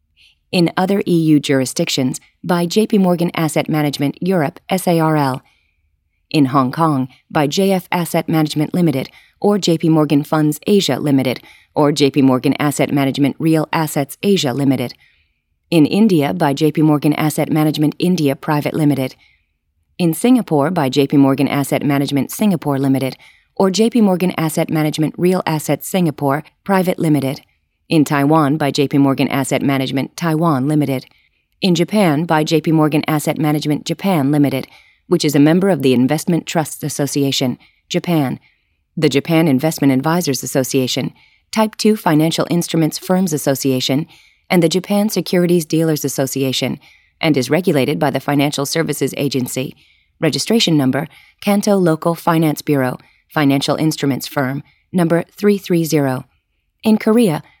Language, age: English, 30-49